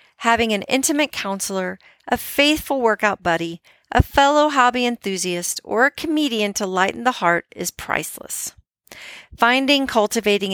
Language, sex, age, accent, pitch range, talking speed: English, female, 40-59, American, 185-255 Hz, 130 wpm